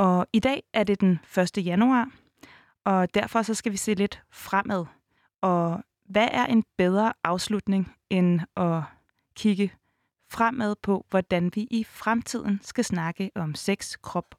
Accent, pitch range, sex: native, 180-230 Hz, female